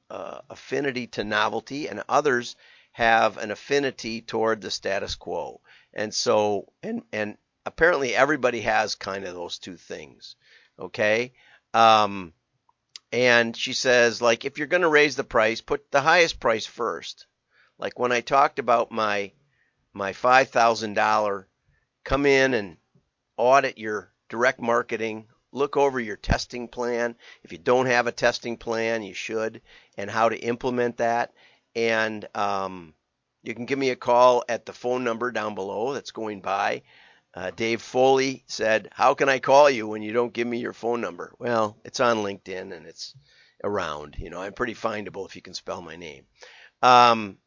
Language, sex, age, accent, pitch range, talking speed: English, male, 50-69, American, 110-125 Hz, 165 wpm